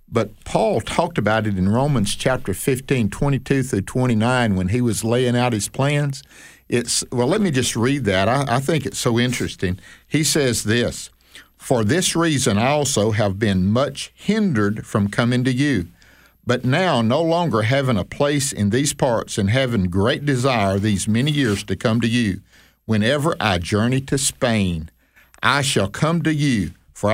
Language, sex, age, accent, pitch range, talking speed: English, male, 50-69, American, 100-135 Hz, 175 wpm